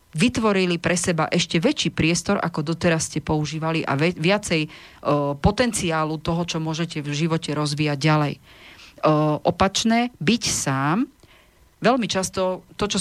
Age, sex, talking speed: 40-59, female, 140 wpm